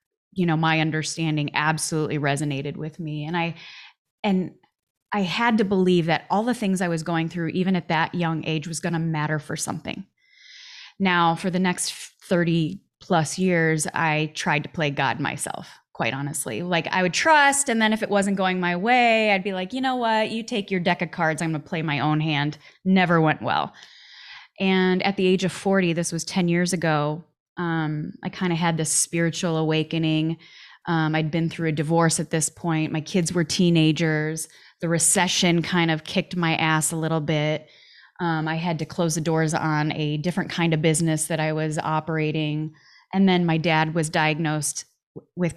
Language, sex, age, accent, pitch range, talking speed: English, female, 20-39, American, 155-180 Hz, 195 wpm